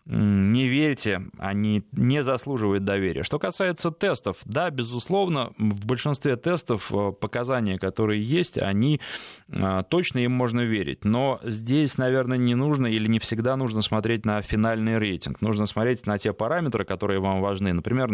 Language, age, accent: Russian, 20-39, native